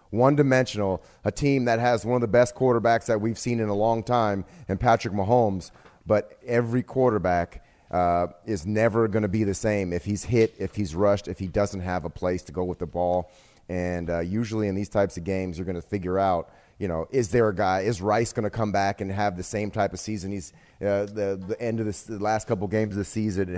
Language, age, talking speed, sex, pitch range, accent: English, 30-49, 240 wpm, male, 95-115 Hz, American